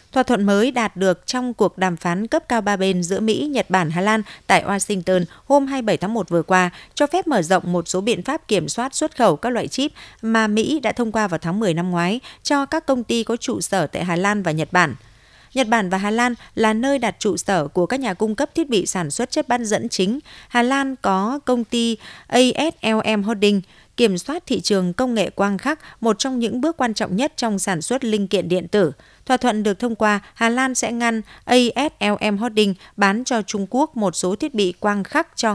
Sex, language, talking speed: female, Vietnamese, 235 wpm